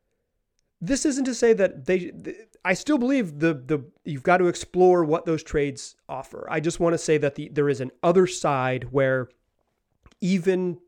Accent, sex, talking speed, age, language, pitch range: American, male, 180 wpm, 30-49, English, 145-185 Hz